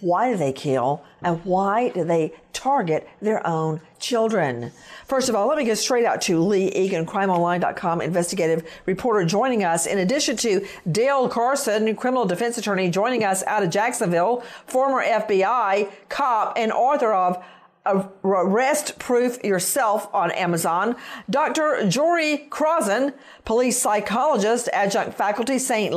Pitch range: 185-255 Hz